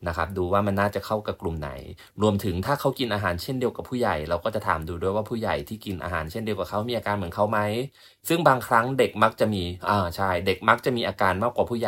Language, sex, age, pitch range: Thai, male, 20-39, 90-110 Hz